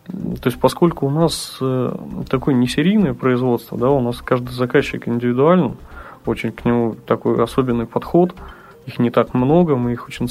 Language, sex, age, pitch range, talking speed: Russian, male, 20-39, 120-150 Hz, 165 wpm